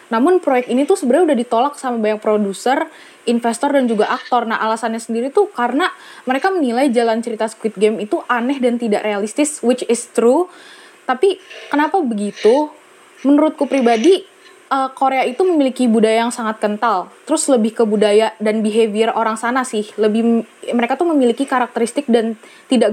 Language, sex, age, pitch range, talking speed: Indonesian, female, 20-39, 225-290 Hz, 160 wpm